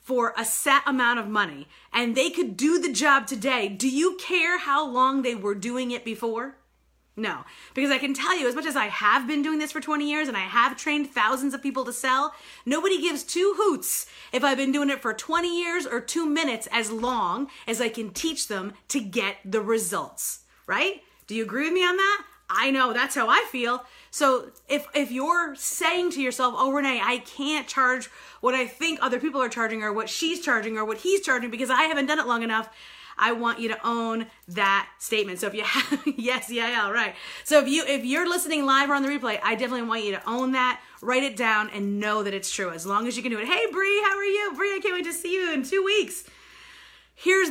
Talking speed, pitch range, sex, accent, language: 240 wpm, 230-300 Hz, female, American, English